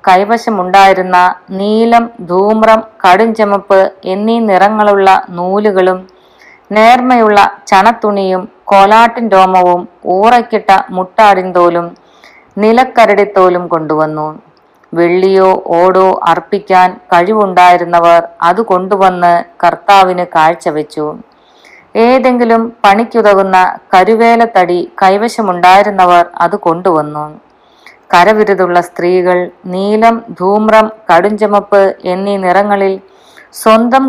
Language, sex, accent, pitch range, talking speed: Malayalam, female, native, 180-215 Hz, 70 wpm